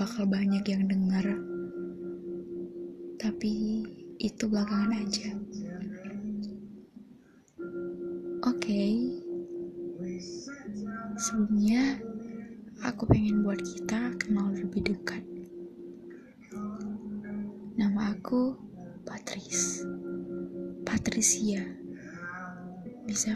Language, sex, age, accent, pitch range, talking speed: Indonesian, female, 20-39, native, 195-225 Hz, 60 wpm